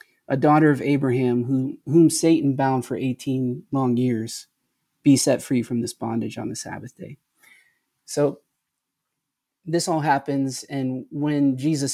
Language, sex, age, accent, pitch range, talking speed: English, male, 20-39, American, 125-150 Hz, 140 wpm